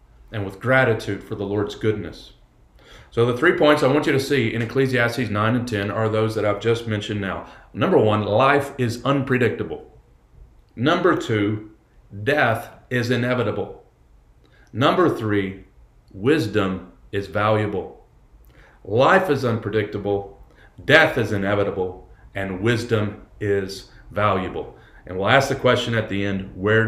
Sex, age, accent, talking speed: male, 40-59, American, 140 wpm